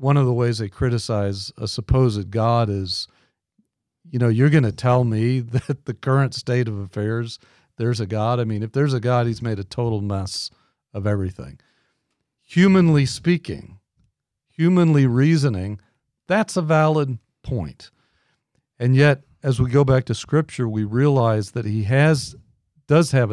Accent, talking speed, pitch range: American, 160 wpm, 105-135 Hz